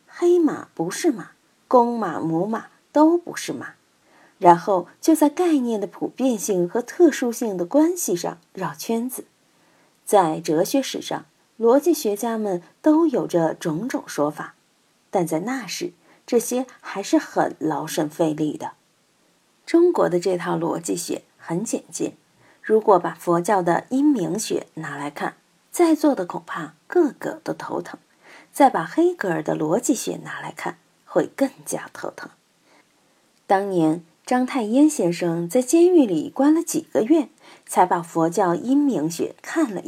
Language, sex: Chinese, female